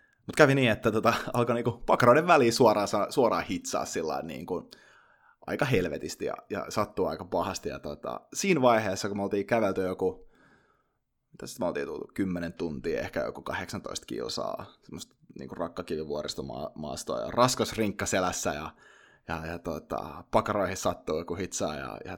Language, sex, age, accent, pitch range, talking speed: Finnish, male, 20-39, native, 95-120 Hz, 145 wpm